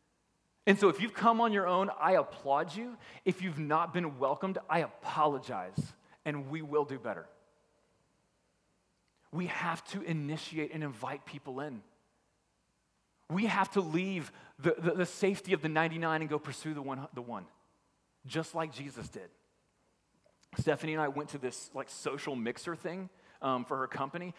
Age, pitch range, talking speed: 30-49, 150-205 Hz, 165 wpm